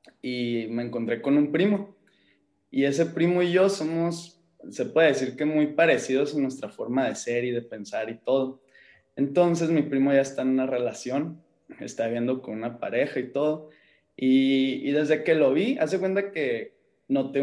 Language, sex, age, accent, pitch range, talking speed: Spanish, male, 20-39, Mexican, 125-165 Hz, 185 wpm